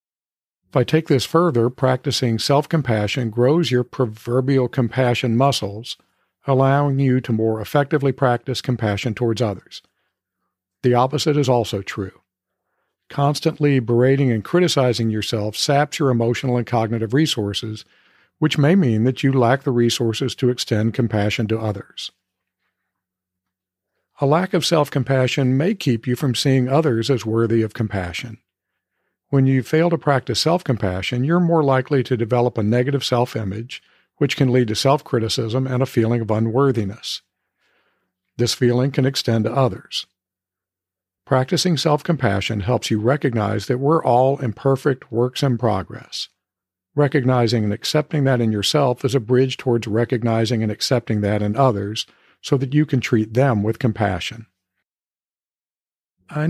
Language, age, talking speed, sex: English, 50-69, 140 wpm, male